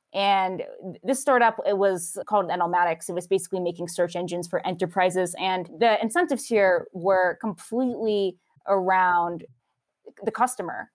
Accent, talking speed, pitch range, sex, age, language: American, 130 wpm, 180-225 Hz, female, 20-39, English